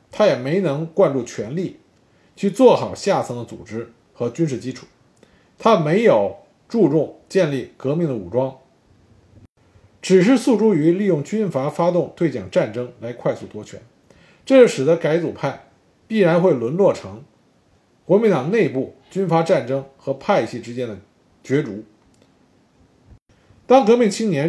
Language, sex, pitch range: Chinese, male, 120-195 Hz